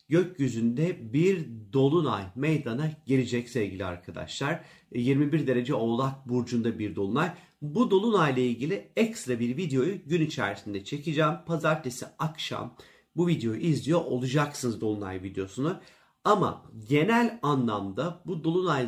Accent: native